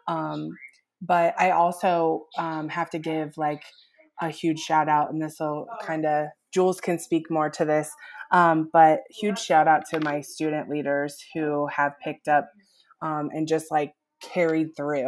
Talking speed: 170 wpm